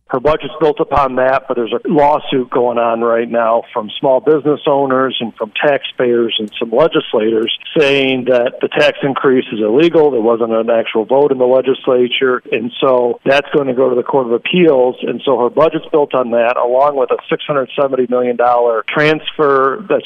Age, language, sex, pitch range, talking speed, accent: 50-69, English, male, 100-130 Hz, 190 wpm, American